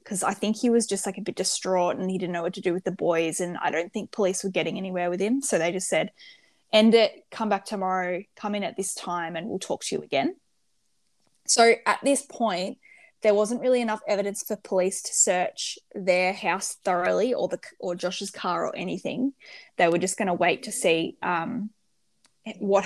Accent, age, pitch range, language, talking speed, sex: Australian, 10-29, 185-230 Hz, English, 220 wpm, female